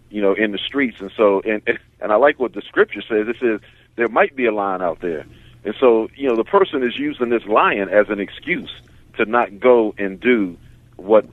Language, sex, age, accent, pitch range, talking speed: English, male, 50-69, American, 100-120 Hz, 230 wpm